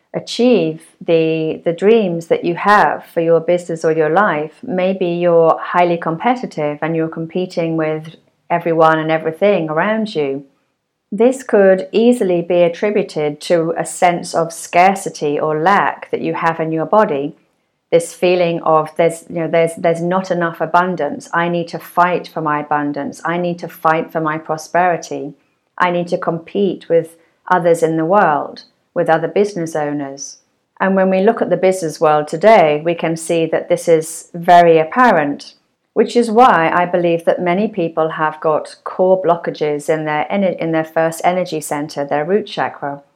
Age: 40-59